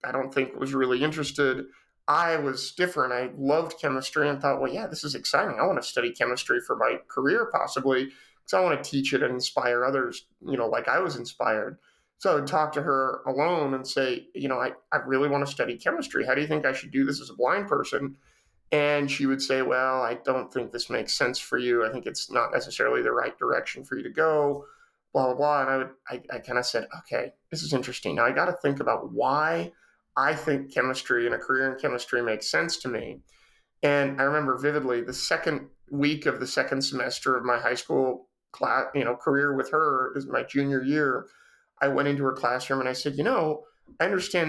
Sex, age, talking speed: male, 30-49, 230 wpm